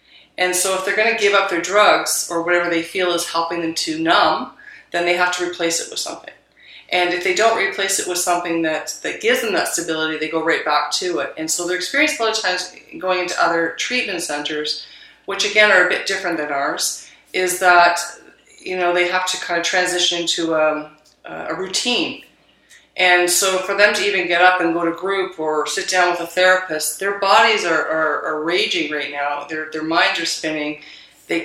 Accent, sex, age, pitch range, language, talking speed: American, female, 40-59, 155-185 Hz, English, 220 wpm